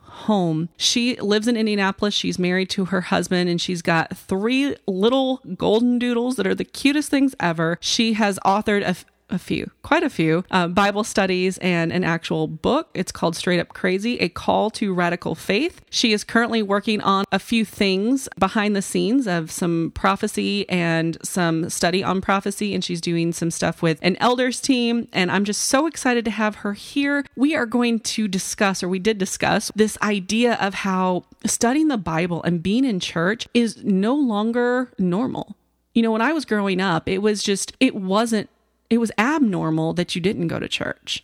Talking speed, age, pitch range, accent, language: 190 wpm, 30-49, 180-235 Hz, American, English